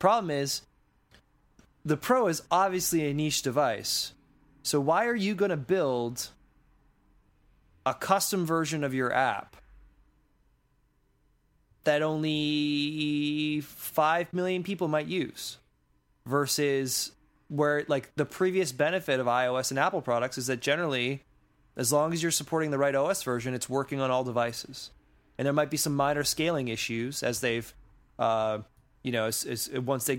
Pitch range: 120-150 Hz